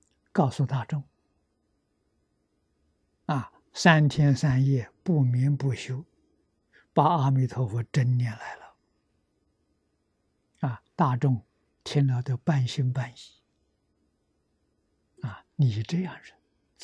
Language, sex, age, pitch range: Chinese, male, 60-79, 105-140 Hz